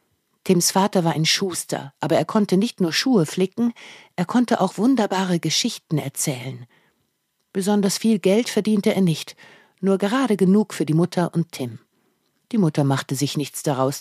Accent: German